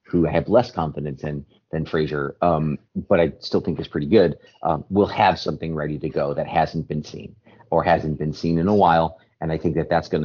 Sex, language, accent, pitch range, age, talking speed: male, English, American, 80-115 Hz, 30-49, 230 wpm